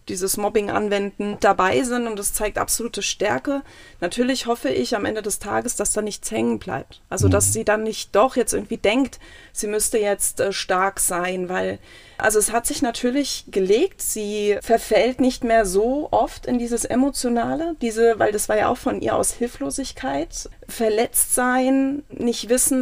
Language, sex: German, female